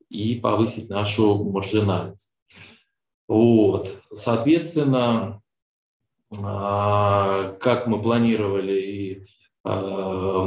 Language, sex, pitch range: Russian, male, 95-120 Hz